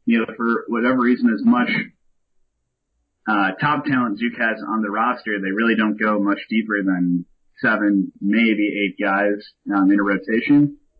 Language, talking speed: English, 165 wpm